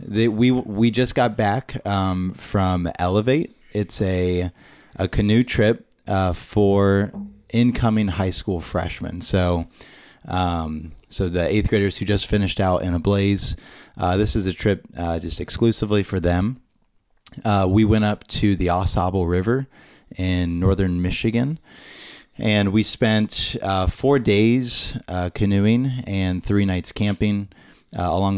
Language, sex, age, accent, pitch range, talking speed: English, male, 30-49, American, 90-105 Hz, 145 wpm